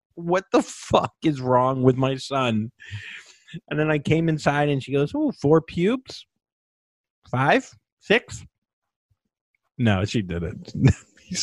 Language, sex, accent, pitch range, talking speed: English, male, American, 100-130 Hz, 130 wpm